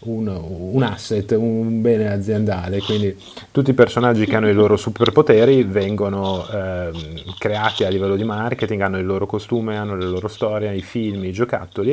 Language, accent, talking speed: Italian, native, 170 wpm